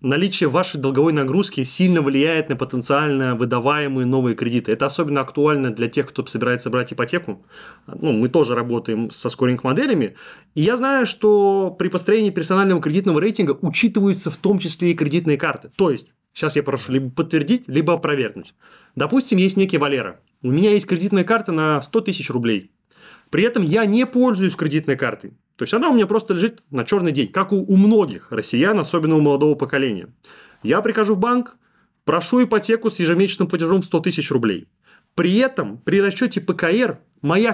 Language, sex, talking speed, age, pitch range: Russian, male, 175 wpm, 20-39, 145-200 Hz